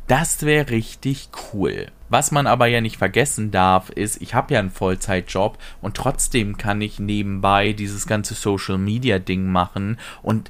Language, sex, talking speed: German, male, 155 wpm